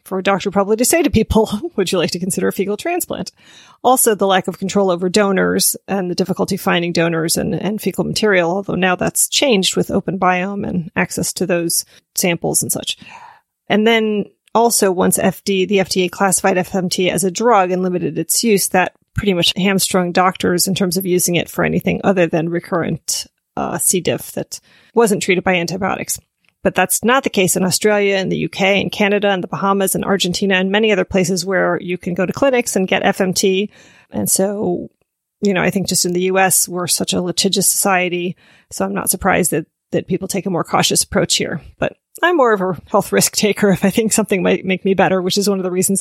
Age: 30-49